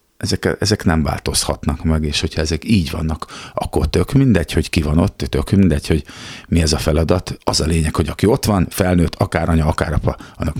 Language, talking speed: Hungarian, 210 wpm